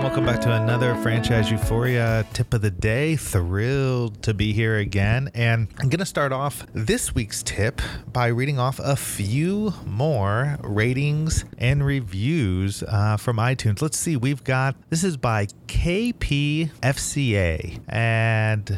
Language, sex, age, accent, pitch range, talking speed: English, male, 30-49, American, 100-135 Hz, 140 wpm